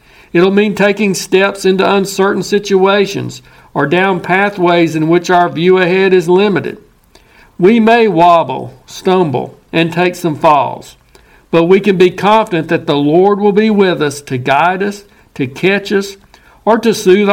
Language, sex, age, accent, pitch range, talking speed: English, male, 60-79, American, 160-195 Hz, 160 wpm